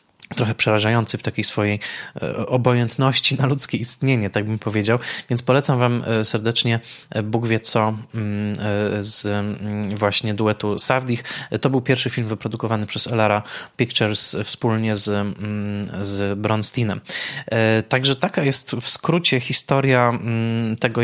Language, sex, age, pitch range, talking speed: Polish, male, 20-39, 110-125 Hz, 120 wpm